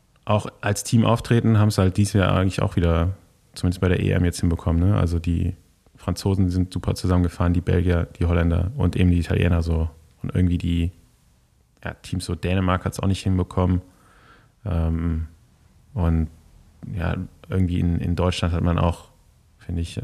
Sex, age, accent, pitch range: male, 20-39, German, 85-100 Hz